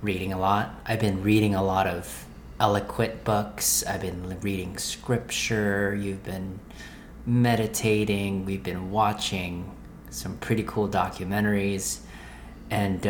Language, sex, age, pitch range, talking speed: English, male, 30-49, 90-110 Hz, 120 wpm